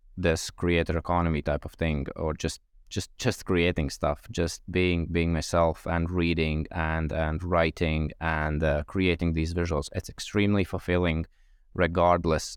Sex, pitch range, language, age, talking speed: male, 80-90 Hz, English, 20-39, 145 wpm